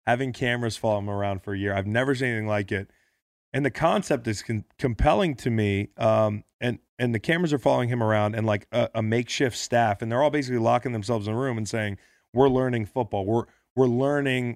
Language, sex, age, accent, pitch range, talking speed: English, male, 30-49, American, 100-130 Hz, 225 wpm